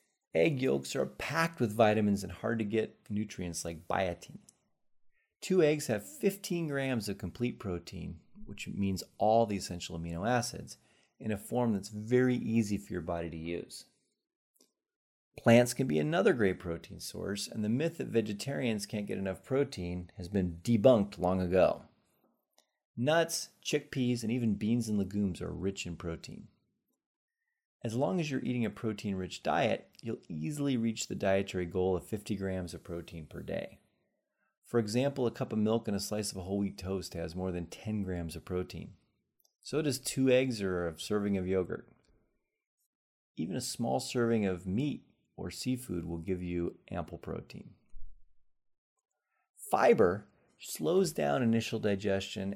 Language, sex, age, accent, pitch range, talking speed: English, male, 30-49, American, 90-120 Hz, 160 wpm